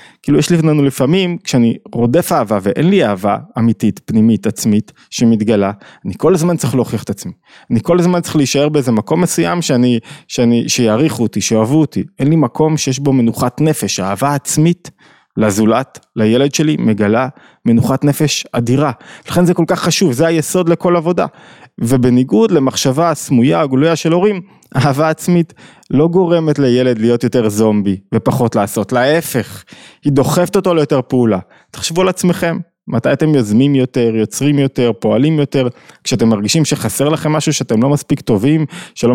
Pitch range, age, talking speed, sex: 120-160 Hz, 20-39, 150 wpm, male